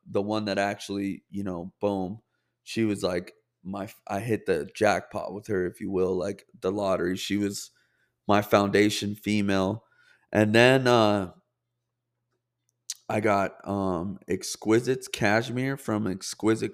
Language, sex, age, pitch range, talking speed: English, male, 20-39, 100-120 Hz, 135 wpm